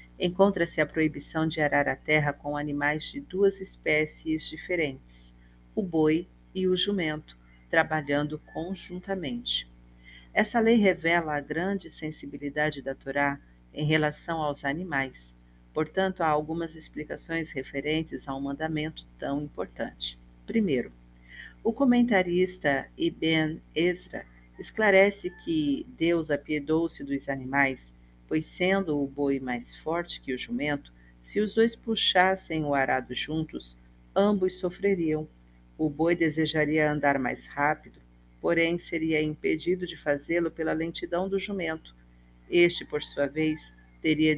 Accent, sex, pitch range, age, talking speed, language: Brazilian, female, 135-170 Hz, 50-69, 125 wpm, Portuguese